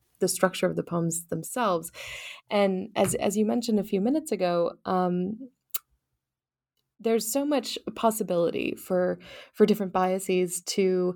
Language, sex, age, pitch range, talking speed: English, female, 20-39, 175-210 Hz, 135 wpm